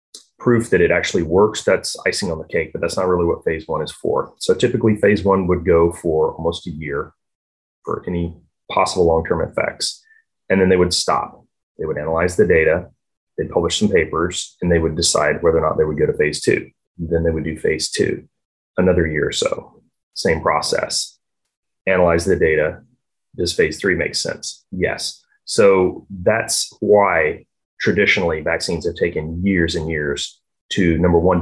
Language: English